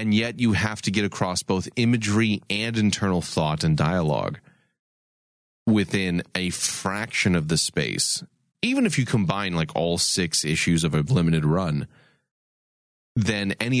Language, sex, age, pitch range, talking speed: English, male, 30-49, 85-115 Hz, 150 wpm